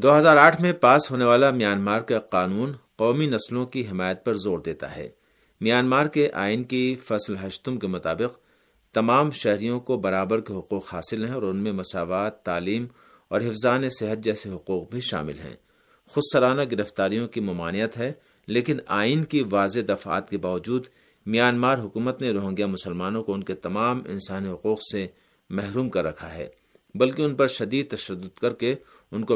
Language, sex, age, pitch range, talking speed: Urdu, male, 50-69, 100-130 Hz, 170 wpm